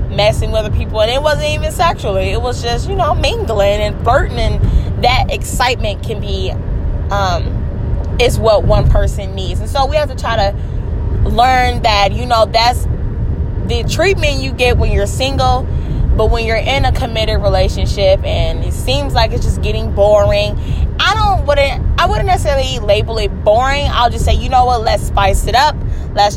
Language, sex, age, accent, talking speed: English, female, 10-29, American, 185 wpm